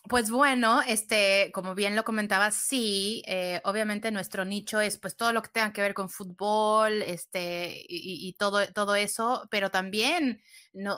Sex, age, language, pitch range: female, 20-39, English, 195-235 Hz